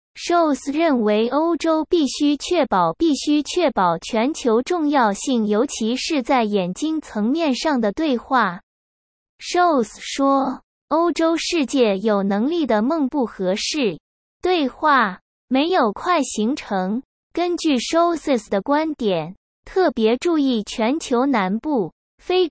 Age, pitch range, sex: 20-39, 220-320 Hz, female